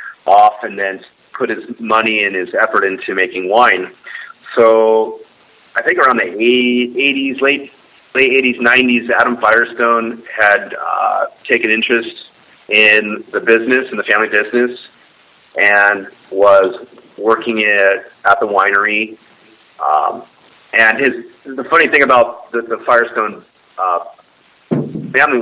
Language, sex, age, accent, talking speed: English, male, 30-49, American, 125 wpm